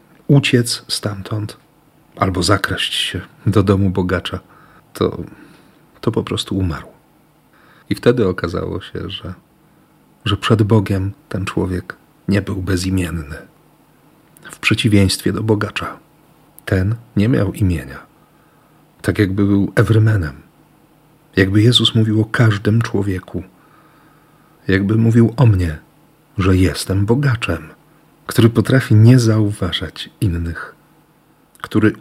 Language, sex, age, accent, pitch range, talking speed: Polish, male, 40-59, native, 95-120 Hz, 105 wpm